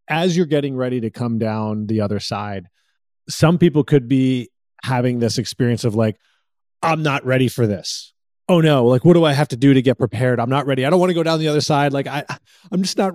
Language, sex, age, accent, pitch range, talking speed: English, male, 30-49, American, 115-150 Hz, 240 wpm